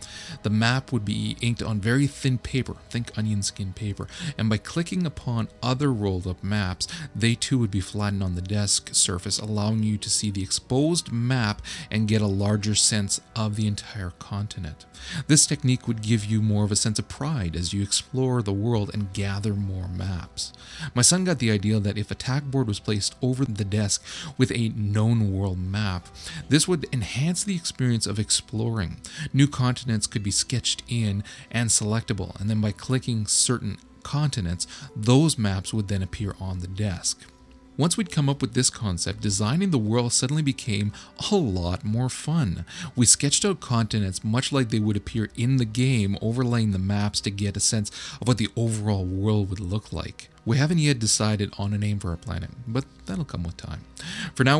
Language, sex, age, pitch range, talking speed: English, male, 30-49, 100-125 Hz, 190 wpm